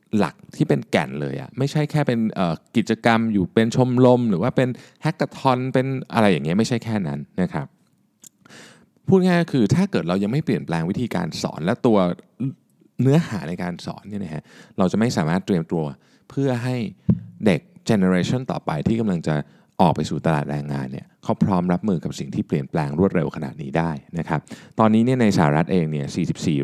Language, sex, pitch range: Thai, male, 80-130 Hz